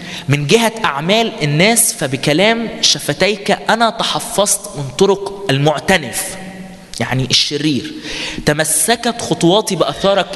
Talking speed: 95 wpm